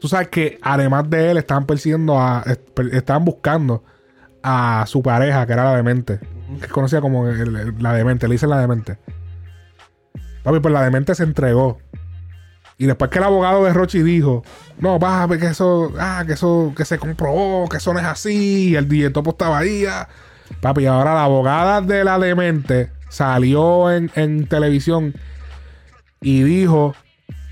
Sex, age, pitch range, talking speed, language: male, 20-39, 130-170 Hz, 165 wpm, Spanish